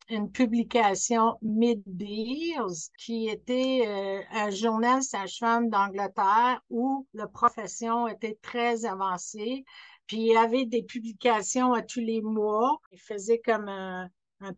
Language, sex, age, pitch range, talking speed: French, female, 60-79, 200-235 Hz, 130 wpm